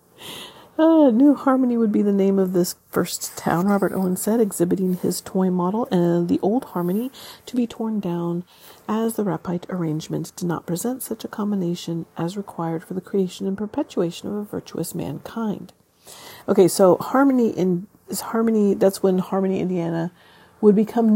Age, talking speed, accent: 40-59, 170 wpm, American